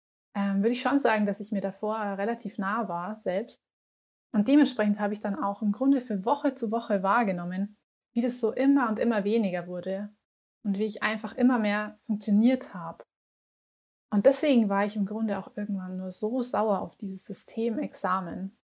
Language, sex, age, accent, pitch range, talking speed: German, female, 20-39, German, 200-235 Hz, 175 wpm